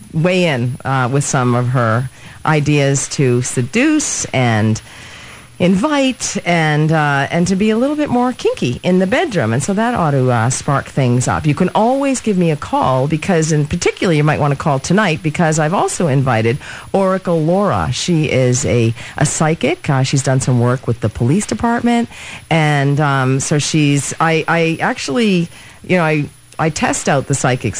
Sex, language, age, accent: female, English, 40-59, American